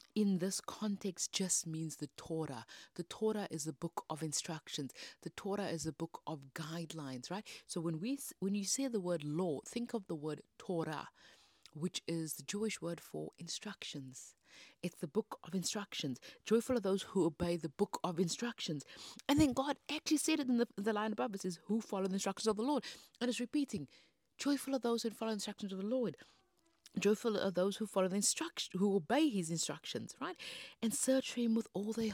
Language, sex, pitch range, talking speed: English, female, 180-245 Hz, 200 wpm